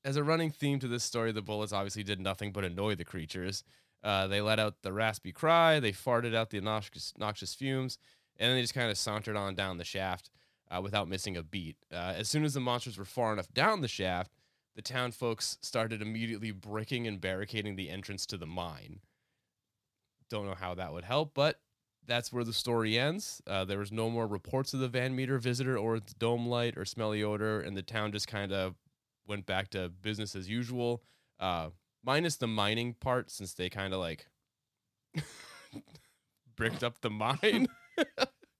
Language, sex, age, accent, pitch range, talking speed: English, male, 20-39, American, 100-130 Hz, 195 wpm